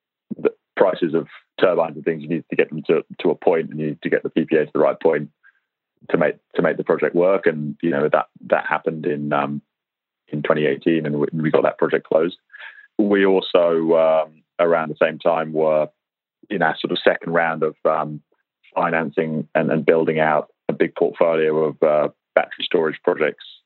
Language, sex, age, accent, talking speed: English, male, 30-49, British, 200 wpm